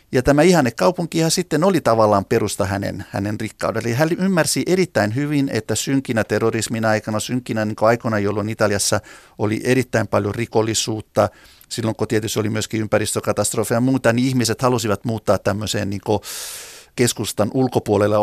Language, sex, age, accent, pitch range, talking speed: Finnish, male, 50-69, native, 110-135 Hz, 150 wpm